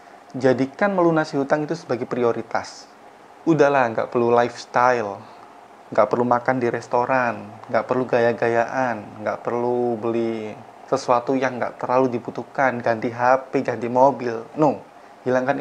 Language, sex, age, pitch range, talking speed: Indonesian, male, 20-39, 120-155 Hz, 125 wpm